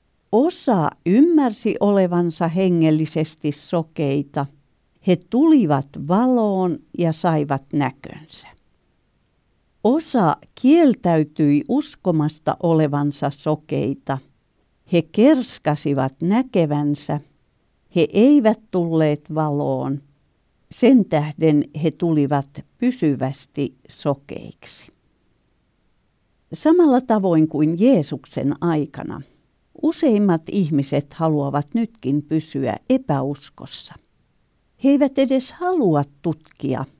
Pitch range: 145-215 Hz